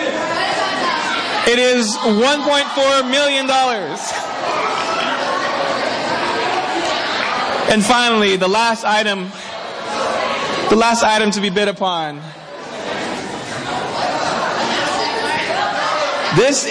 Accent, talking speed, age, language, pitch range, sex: American, 65 wpm, 20-39, English, 190-255 Hz, male